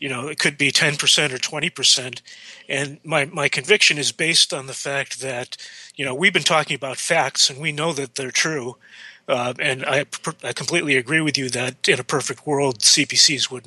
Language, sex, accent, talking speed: English, male, American, 210 wpm